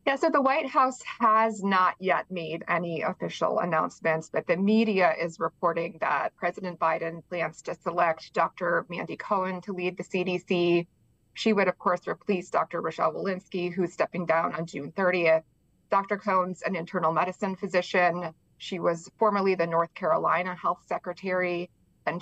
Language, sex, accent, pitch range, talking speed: English, female, American, 170-200 Hz, 160 wpm